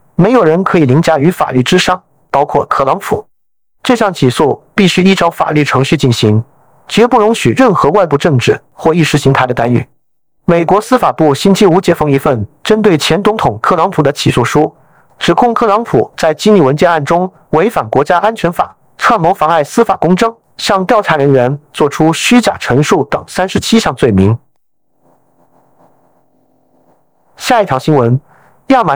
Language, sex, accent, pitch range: Chinese, male, native, 140-195 Hz